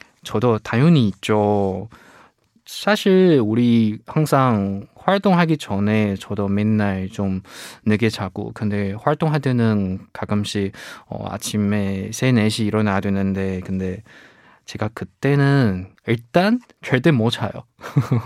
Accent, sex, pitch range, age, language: native, male, 105-135 Hz, 20-39, Korean